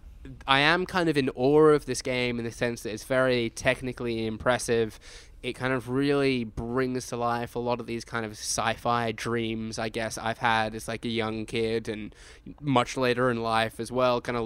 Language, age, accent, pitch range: English, 10-29, Australian, 115-130 Hz